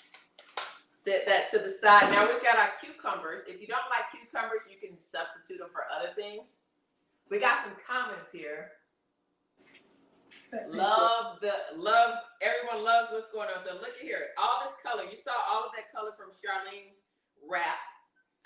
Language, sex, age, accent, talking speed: English, female, 40-59, American, 165 wpm